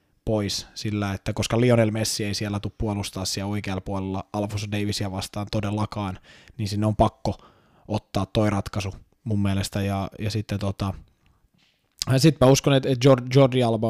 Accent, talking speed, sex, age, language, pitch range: native, 165 wpm, male, 20-39, Finnish, 95-110 Hz